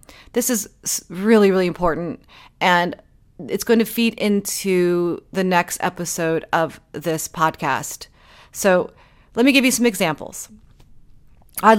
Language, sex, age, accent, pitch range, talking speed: English, female, 30-49, American, 180-235 Hz, 125 wpm